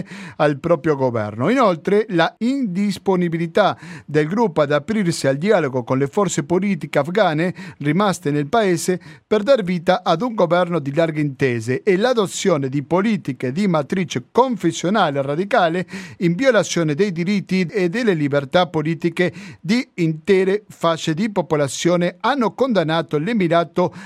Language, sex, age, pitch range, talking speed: Italian, male, 50-69, 150-200 Hz, 130 wpm